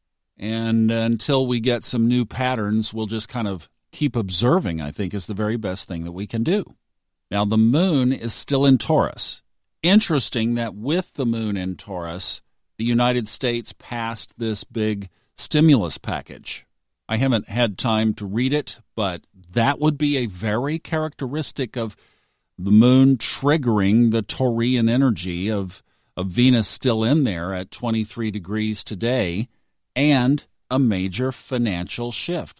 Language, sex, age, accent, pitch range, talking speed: English, male, 50-69, American, 100-130 Hz, 150 wpm